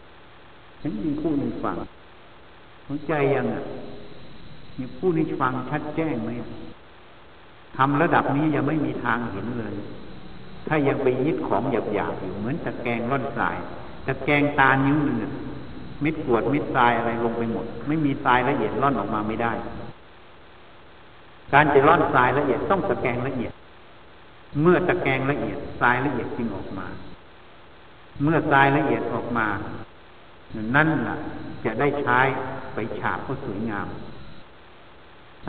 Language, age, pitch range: Thai, 60-79, 115-150 Hz